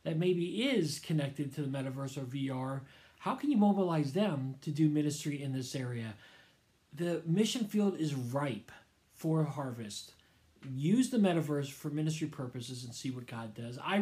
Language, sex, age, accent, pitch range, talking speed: English, male, 40-59, American, 135-185 Hz, 165 wpm